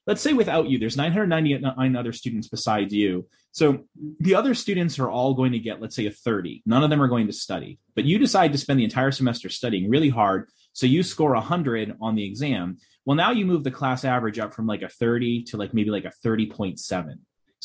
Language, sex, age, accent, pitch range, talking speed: English, male, 30-49, American, 105-140 Hz, 225 wpm